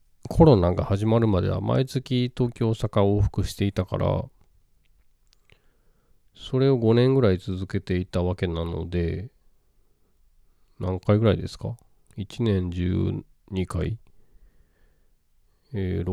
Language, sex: Japanese, male